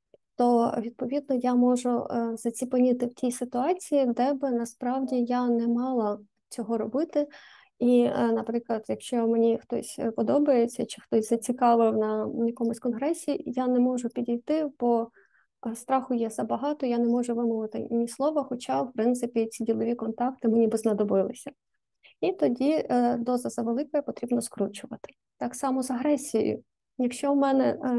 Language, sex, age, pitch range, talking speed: Ukrainian, female, 20-39, 235-265 Hz, 140 wpm